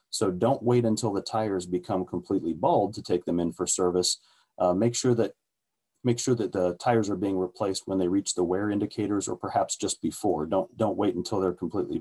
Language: English